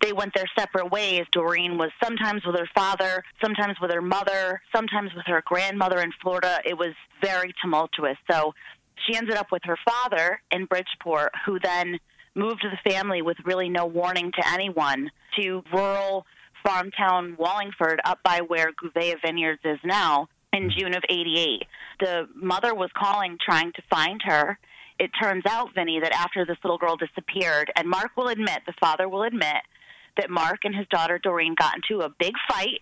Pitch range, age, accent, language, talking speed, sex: 170-200 Hz, 30-49, American, English, 180 wpm, female